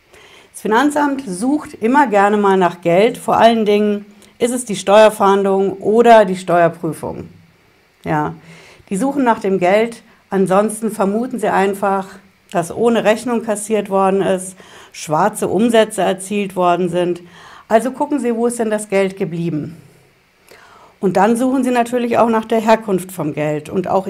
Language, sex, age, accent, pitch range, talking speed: German, female, 60-79, German, 180-230 Hz, 150 wpm